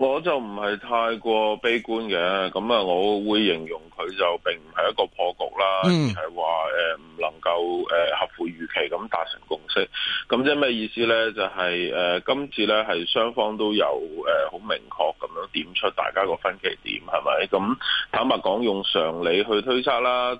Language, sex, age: Chinese, male, 20-39